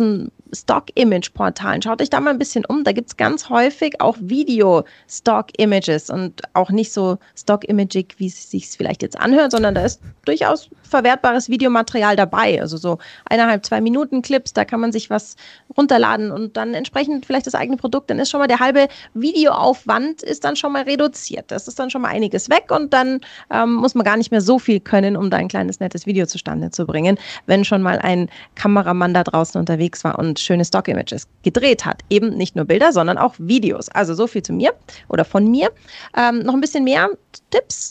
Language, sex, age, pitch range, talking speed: German, female, 30-49, 200-265 Hz, 200 wpm